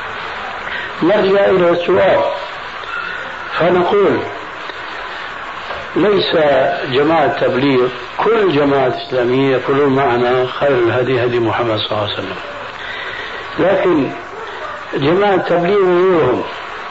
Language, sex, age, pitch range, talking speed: Arabic, male, 60-79, 135-200 Hz, 85 wpm